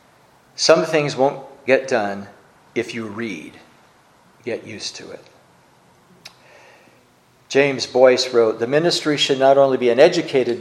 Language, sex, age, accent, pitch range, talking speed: English, male, 60-79, American, 120-150 Hz, 130 wpm